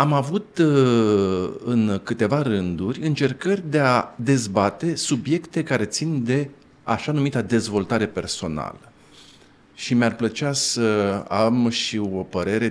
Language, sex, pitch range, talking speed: Romanian, male, 95-125 Hz, 115 wpm